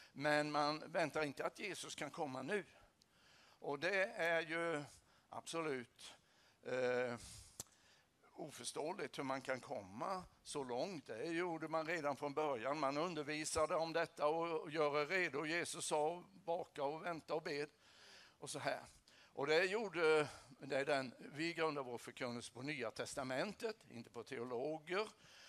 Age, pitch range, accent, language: 60-79, 125-165 Hz, Swedish, English